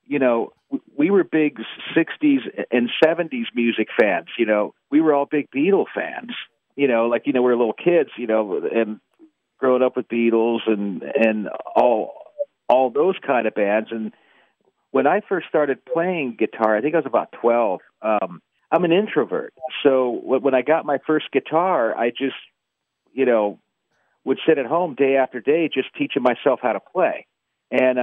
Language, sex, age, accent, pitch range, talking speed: English, male, 50-69, American, 115-160 Hz, 180 wpm